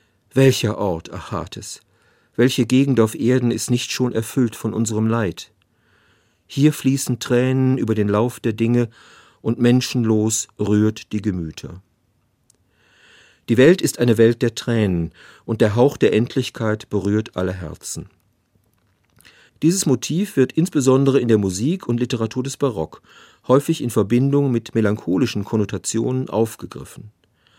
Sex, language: male, German